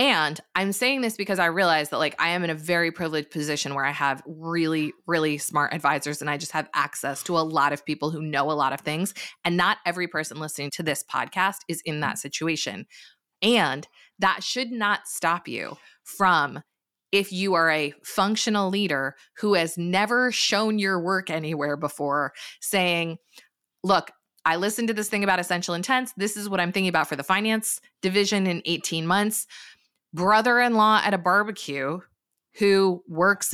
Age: 20-39